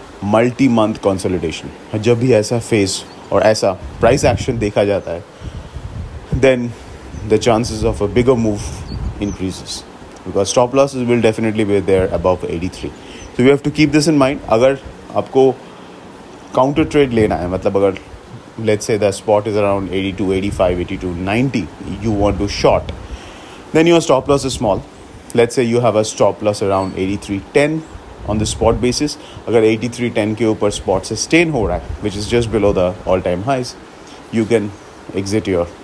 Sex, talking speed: male, 160 wpm